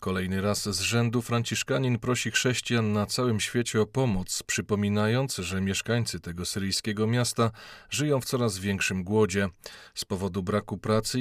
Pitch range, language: 95-120 Hz, Polish